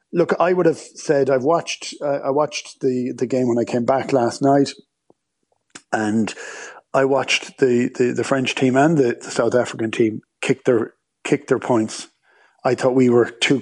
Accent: Irish